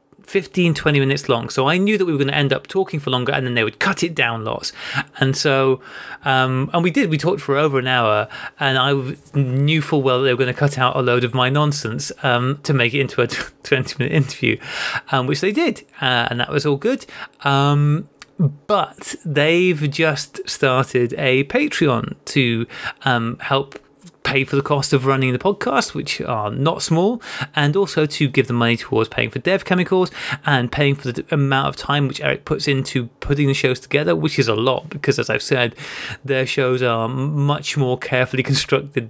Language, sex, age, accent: English, male, 30-49, British